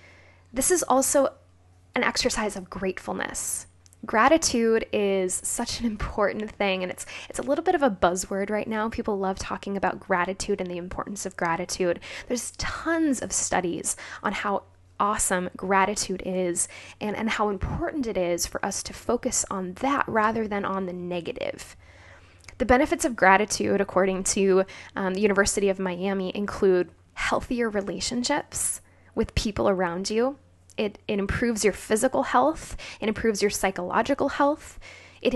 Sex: female